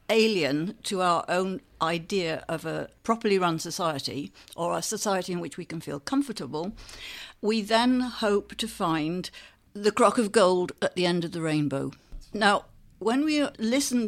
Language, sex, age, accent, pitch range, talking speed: English, female, 60-79, British, 165-225 Hz, 160 wpm